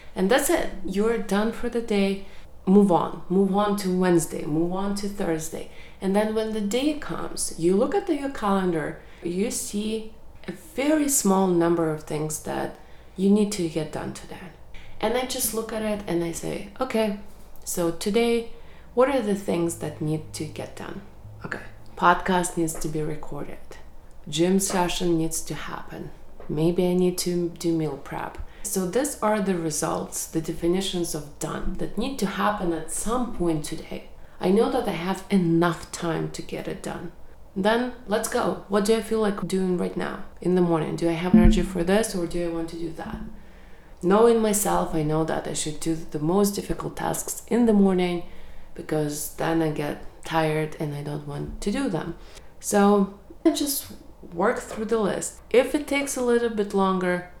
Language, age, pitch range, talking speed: English, 30-49, 165-215 Hz, 185 wpm